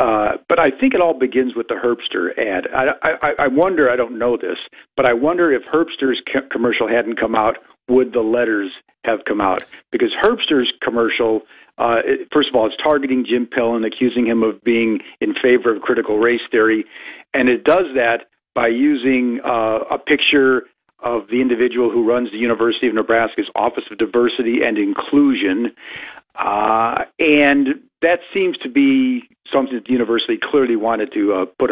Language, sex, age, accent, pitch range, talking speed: English, male, 50-69, American, 120-165 Hz, 180 wpm